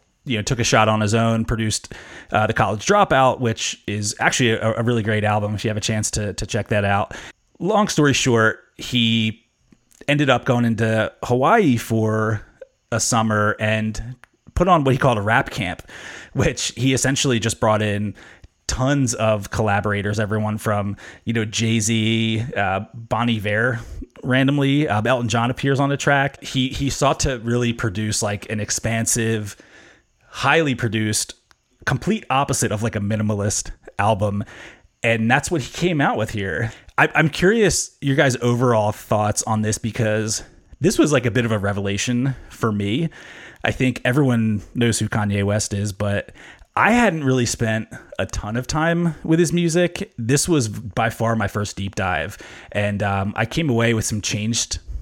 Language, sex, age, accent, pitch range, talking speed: English, male, 30-49, American, 105-130 Hz, 175 wpm